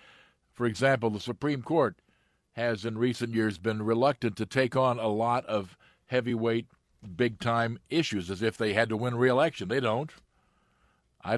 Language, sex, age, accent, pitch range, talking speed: English, male, 50-69, American, 105-125 Hz, 160 wpm